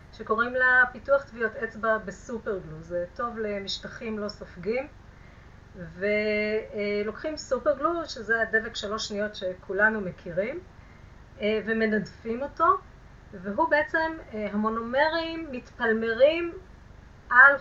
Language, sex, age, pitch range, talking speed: Hebrew, female, 30-49, 210-275 Hz, 90 wpm